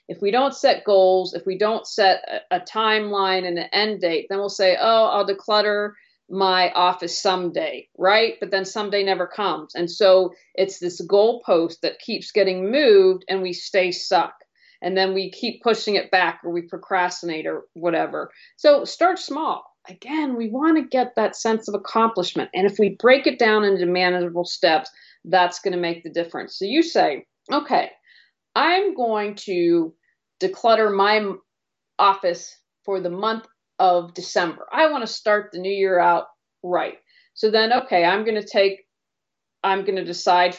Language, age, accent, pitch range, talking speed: English, 50-69, American, 180-225 Hz, 175 wpm